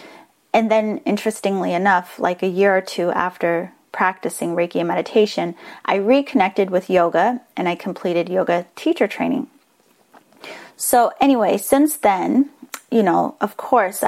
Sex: female